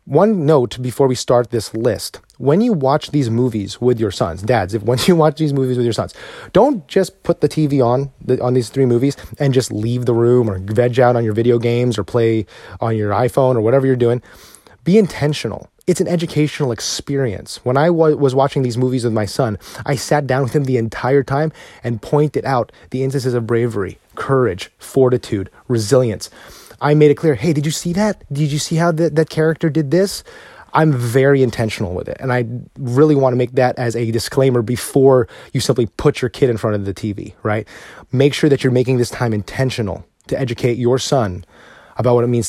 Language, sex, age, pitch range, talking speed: English, male, 30-49, 115-145 Hz, 210 wpm